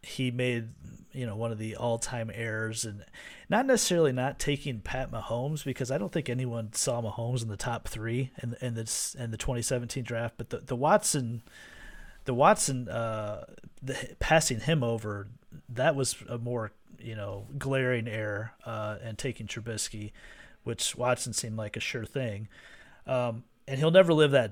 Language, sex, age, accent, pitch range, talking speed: English, male, 30-49, American, 110-130 Hz, 170 wpm